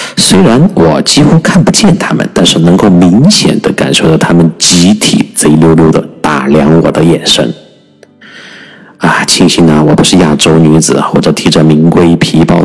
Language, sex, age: Chinese, male, 50-69